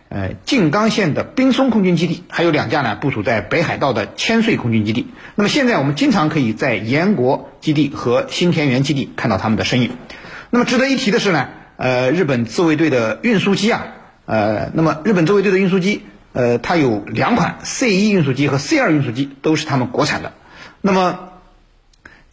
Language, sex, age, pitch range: Chinese, male, 50-69, 125-200 Hz